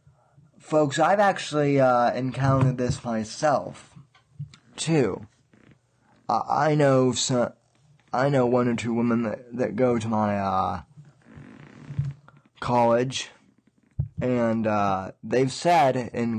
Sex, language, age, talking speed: male, English, 20-39, 110 wpm